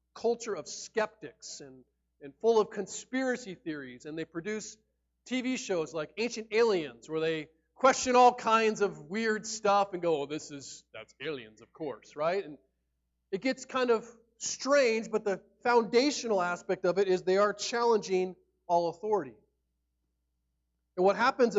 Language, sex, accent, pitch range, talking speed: English, male, American, 150-210 Hz, 155 wpm